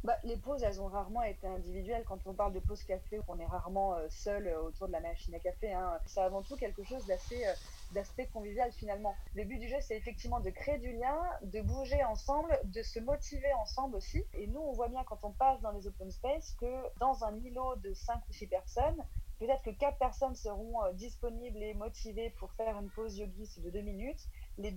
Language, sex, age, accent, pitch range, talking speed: French, female, 30-49, French, 205-260 Hz, 220 wpm